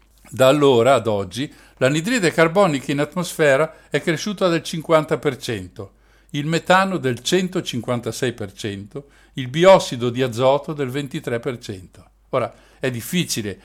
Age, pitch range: 60-79, 115-165 Hz